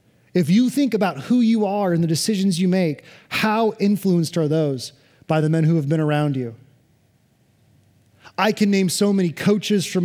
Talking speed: 185 wpm